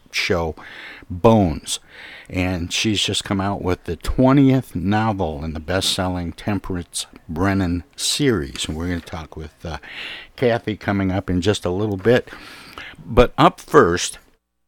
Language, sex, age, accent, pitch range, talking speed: English, male, 60-79, American, 85-105 Hz, 145 wpm